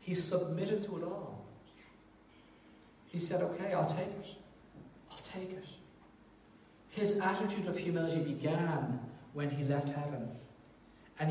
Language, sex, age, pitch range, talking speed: English, male, 40-59, 135-170 Hz, 125 wpm